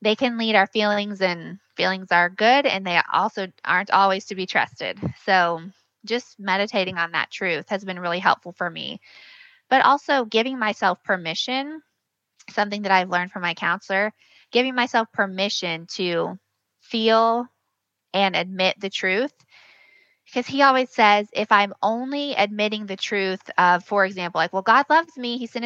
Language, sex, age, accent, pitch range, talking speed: English, female, 20-39, American, 190-230 Hz, 160 wpm